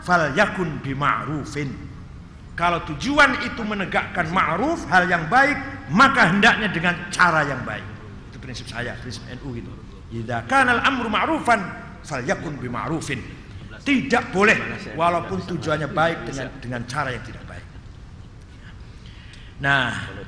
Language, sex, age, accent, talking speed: Indonesian, male, 50-69, native, 105 wpm